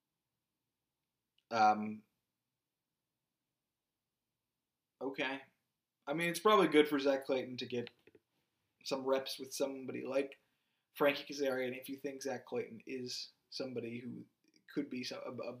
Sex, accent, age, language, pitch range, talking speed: male, American, 20-39, English, 120-145 Hz, 115 wpm